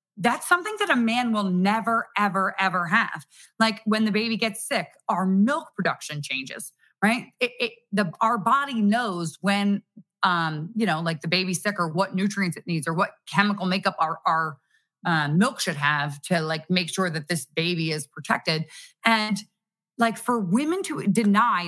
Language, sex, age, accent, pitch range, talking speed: English, female, 30-49, American, 170-210 Hz, 180 wpm